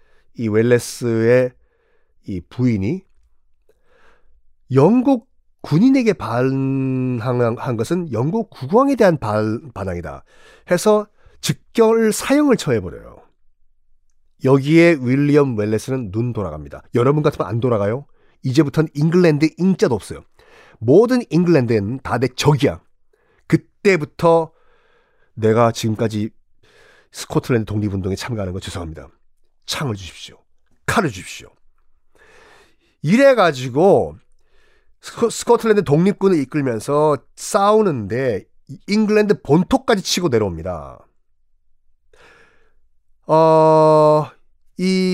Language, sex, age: Korean, male, 40-59